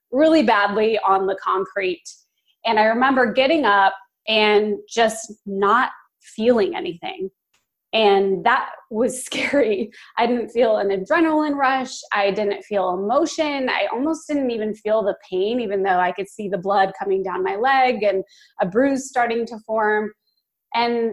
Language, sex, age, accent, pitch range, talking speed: English, female, 20-39, American, 205-280 Hz, 155 wpm